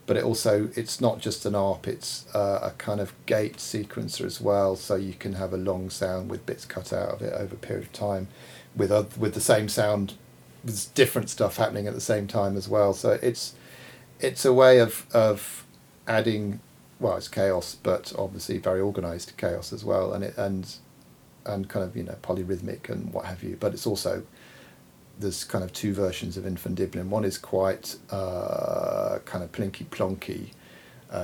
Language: English